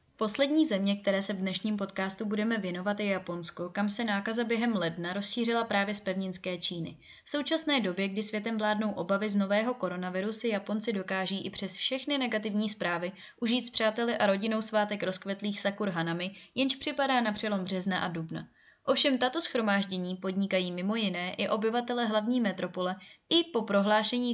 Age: 20-39